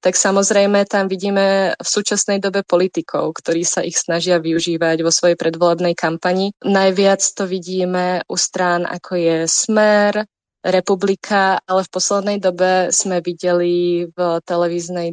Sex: female